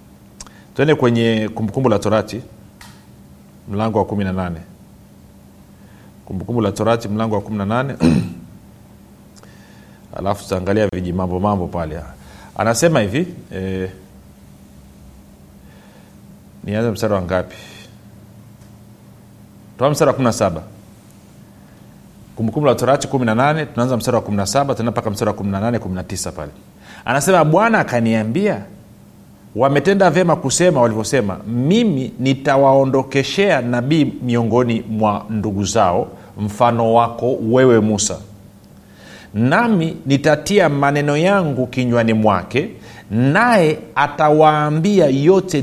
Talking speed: 100 wpm